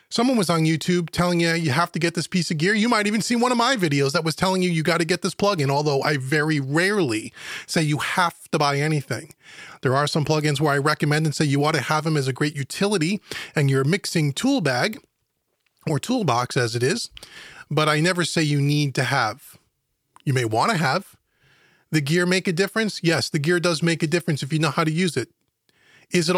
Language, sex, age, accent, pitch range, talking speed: English, male, 30-49, American, 145-185 Hz, 235 wpm